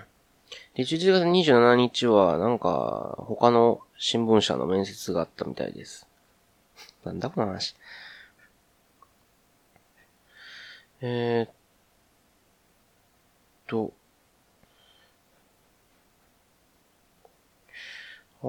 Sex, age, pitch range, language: male, 30-49, 105-135 Hz, Japanese